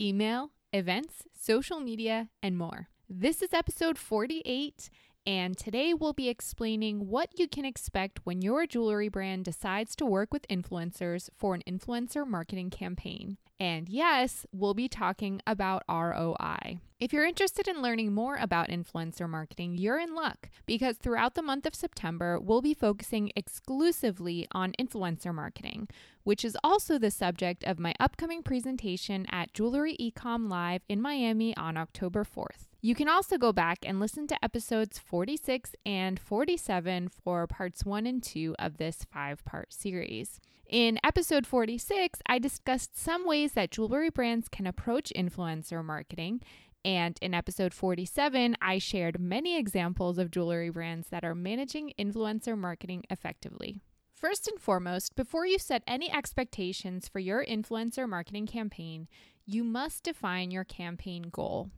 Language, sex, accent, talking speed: English, female, American, 150 wpm